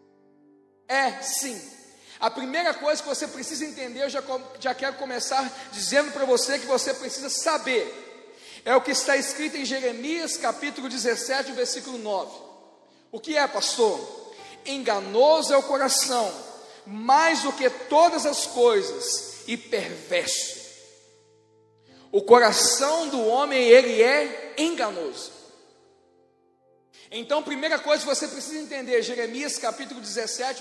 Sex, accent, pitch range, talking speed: male, Brazilian, 250-300 Hz, 125 wpm